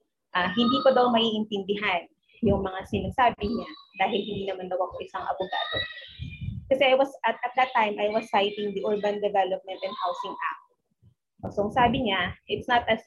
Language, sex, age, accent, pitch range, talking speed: Filipino, female, 20-39, native, 195-265 Hz, 175 wpm